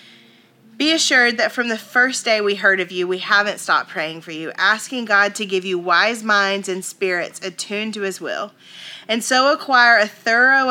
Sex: female